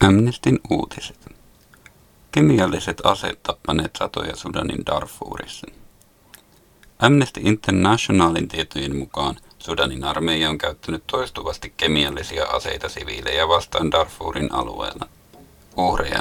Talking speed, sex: 90 wpm, male